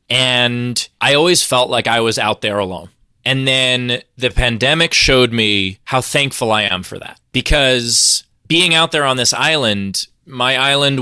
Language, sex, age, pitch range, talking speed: English, male, 20-39, 105-130 Hz, 170 wpm